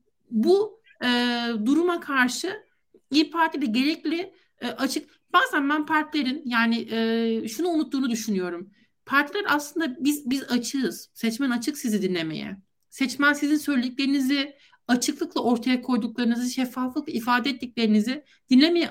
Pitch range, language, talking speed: 235-310 Hz, Turkish, 115 wpm